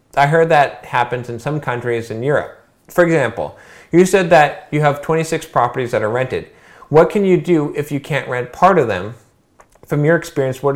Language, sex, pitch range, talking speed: English, male, 105-145 Hz, 200 wpm